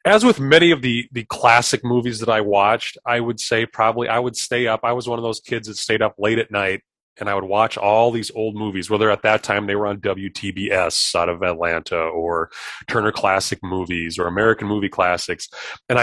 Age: 30-49